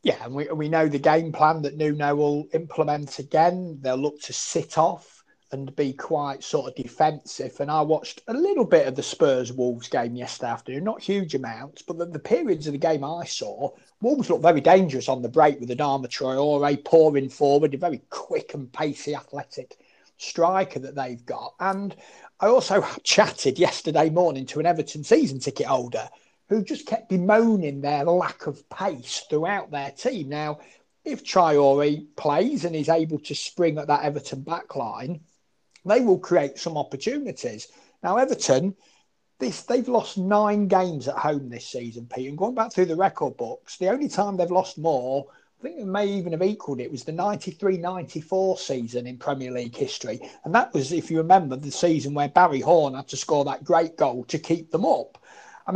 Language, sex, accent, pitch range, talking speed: English, male, British, 140-185 Hz, 190 wpm